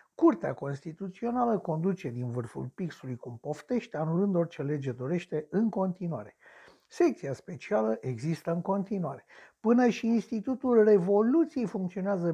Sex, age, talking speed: male, 60-79, 115 wpm